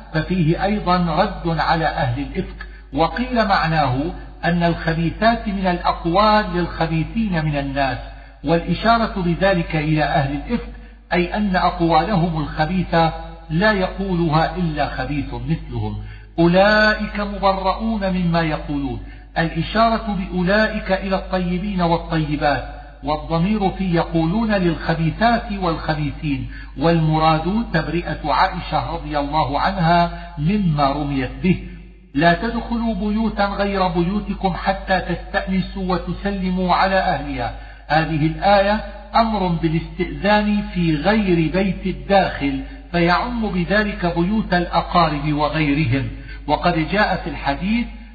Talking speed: 100 wpm